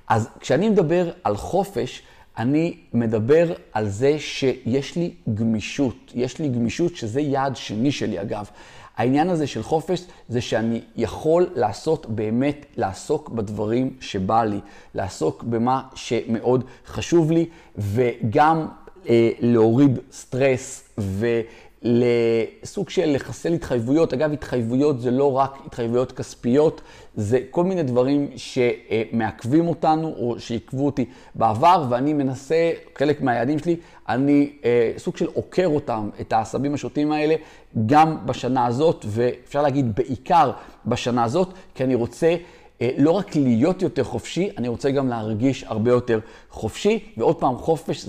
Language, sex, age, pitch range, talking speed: Hebrew, male, 40-59, 115-150 Hz, 130 wpm